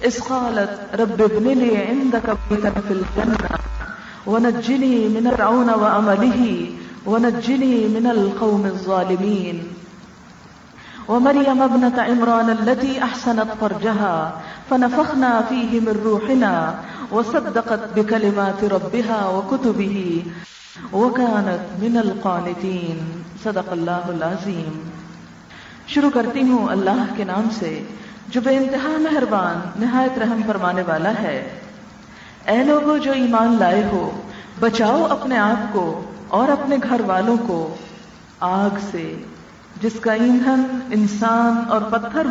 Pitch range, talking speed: 200-245 Hz, 105 wpm